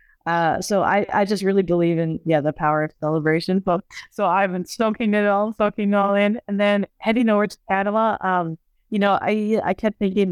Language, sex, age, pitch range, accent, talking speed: English, female, 30-49, 165-205 Hz, American, 215 wpm